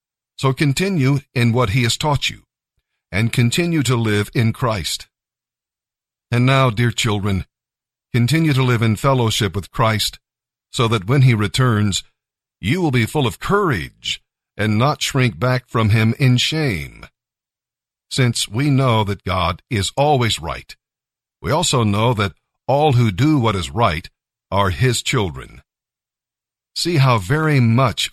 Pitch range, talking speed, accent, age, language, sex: 110-135 Hz, 145 wpm, American, 50-69, English, male